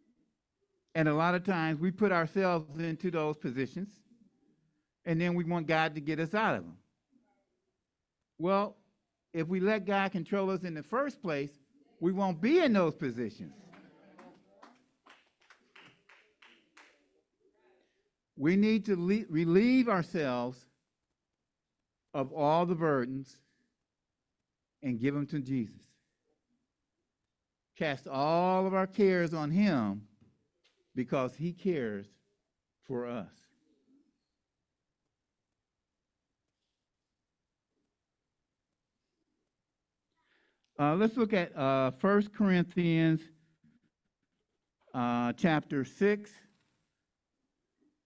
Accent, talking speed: American, 95 wpm